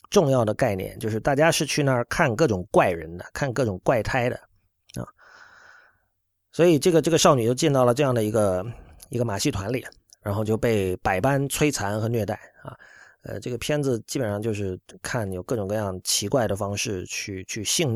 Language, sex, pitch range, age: Chinese, male, 100-150 Hz, 30-49